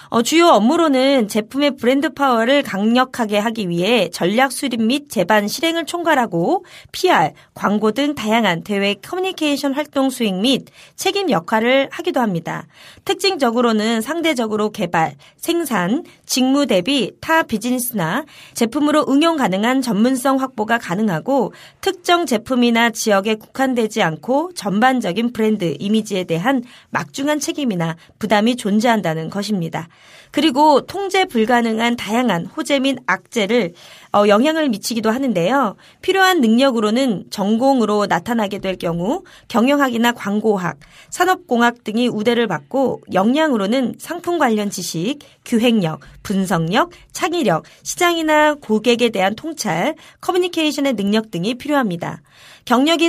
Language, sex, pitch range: Korean, female, 210-285 Hz